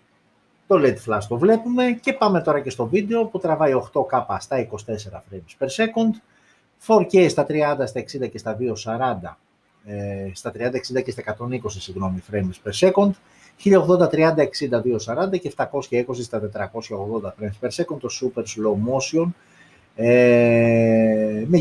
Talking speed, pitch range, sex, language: 155 wpm, 110-180 Hz, male, Greek